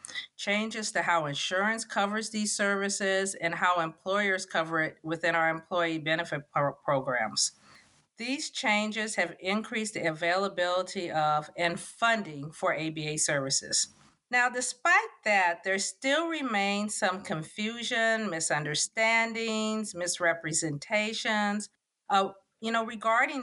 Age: 50-69